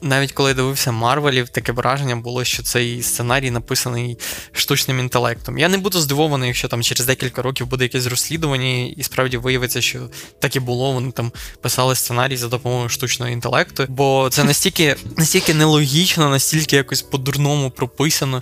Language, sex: Ukrainian, male